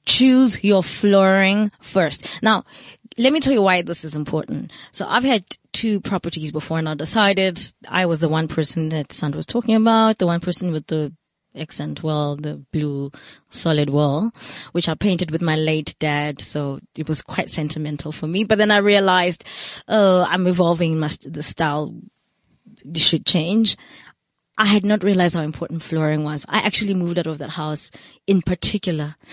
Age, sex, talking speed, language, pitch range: 20-39, female, 180 wpm, English, 155-200 Hz